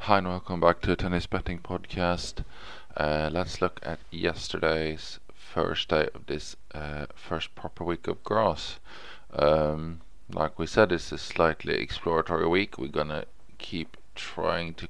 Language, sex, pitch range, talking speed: English, male, 75-90 Hz, 160 wpm